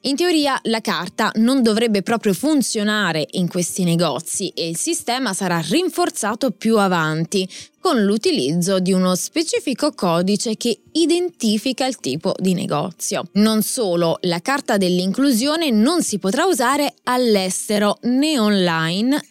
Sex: female